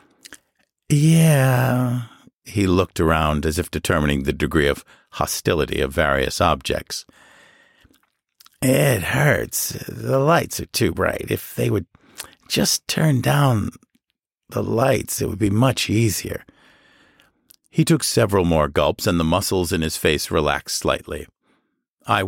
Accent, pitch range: American, 85-140 Hz